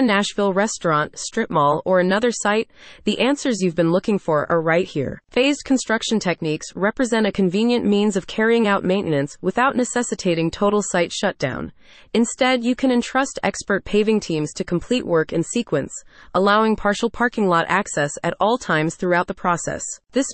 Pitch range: 175-230 Hz